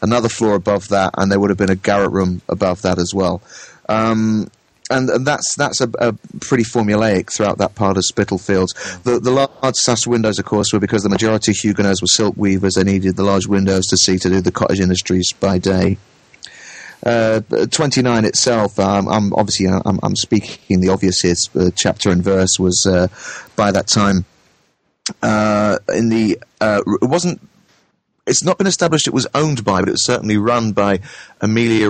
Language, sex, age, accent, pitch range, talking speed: English, male, 30-49, British, 95-110 Hz, 190 wpm